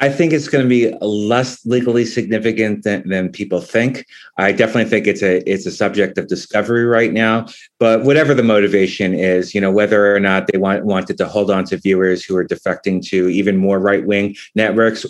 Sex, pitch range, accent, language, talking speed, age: male, 95-115 Hz, American, English, 205 wpm, 30-49